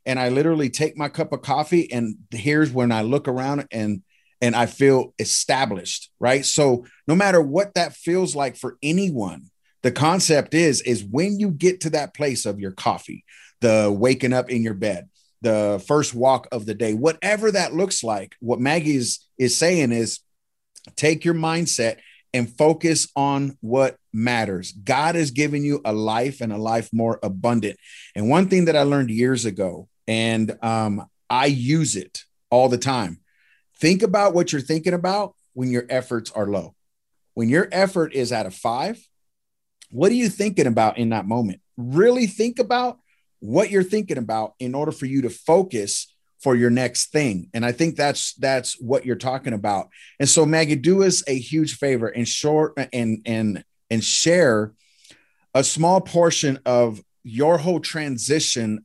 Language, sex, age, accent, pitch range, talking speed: English, male, 30-49, American, 115-160 Hz, 175 wpm